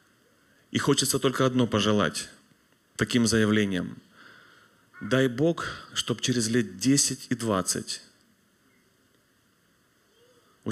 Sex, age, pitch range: male, 30-49, 115-140 Hz